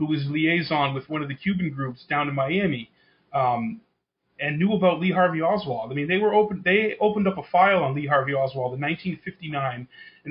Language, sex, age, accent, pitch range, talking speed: English, male, 30-49, American, 130-165 Hz, 210 wpm